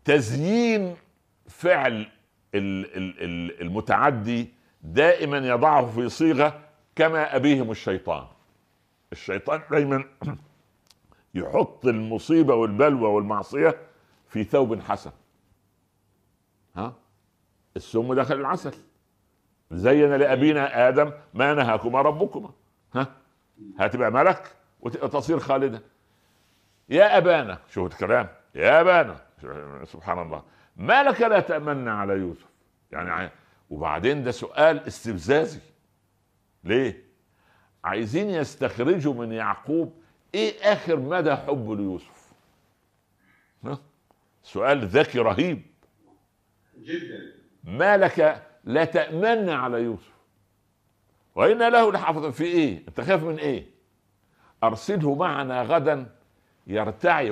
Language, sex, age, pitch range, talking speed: Arabic, male, 60-79, 100-155 Hz, 90 wpm